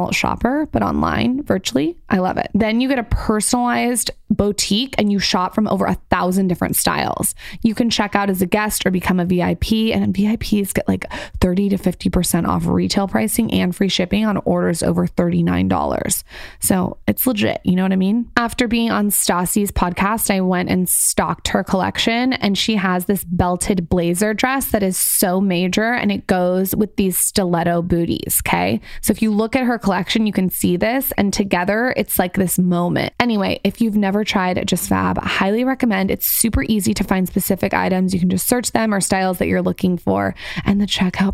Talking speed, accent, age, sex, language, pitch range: 195 wpm, American, 20-39, female, English, 185-220 Hz